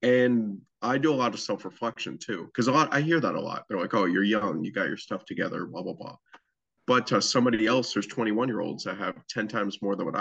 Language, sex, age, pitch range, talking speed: English, male, 20-39, 100-115 Hz, 255 wpm